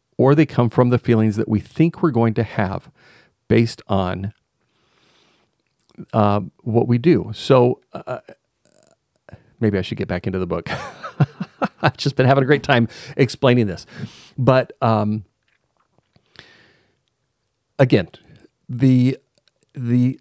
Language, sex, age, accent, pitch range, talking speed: English, male, 40-59, American, 105-130 Hz, 130 wpm